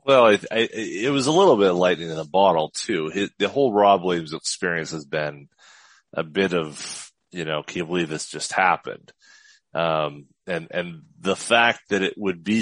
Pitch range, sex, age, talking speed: 85-110 Hz, male, 30-49, 200 wpm